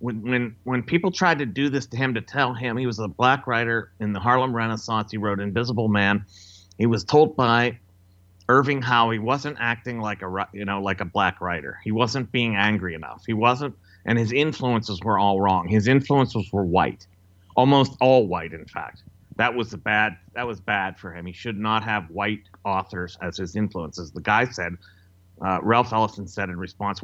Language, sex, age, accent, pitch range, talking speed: English, male, 30-49, American, 95-125 Hz, 200 wpm